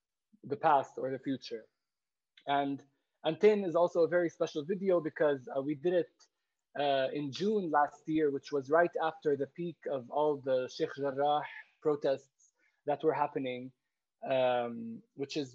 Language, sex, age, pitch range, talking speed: English, male, 20-39, 140-170 Hz, 160 wpm